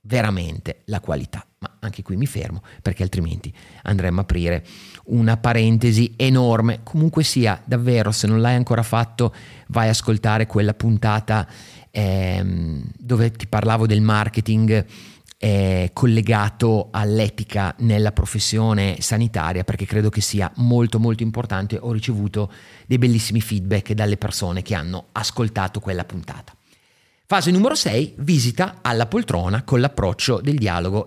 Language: Italian